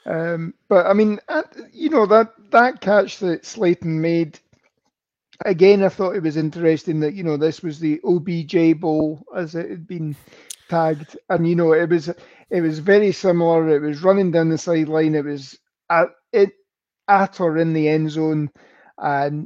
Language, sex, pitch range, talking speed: English, male, 155-180 Hz, 175 wpm